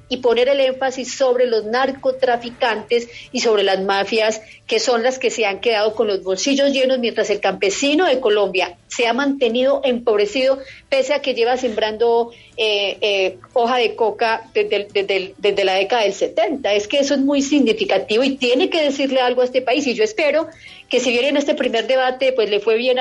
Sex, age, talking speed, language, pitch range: female, 40-59, 205 wpm, Spanish, 215-275 Hz